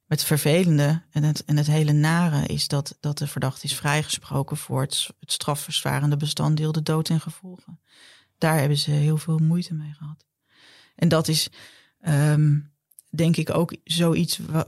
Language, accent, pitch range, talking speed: Dutch, Dutch, 150-160 Hz, 170 wpm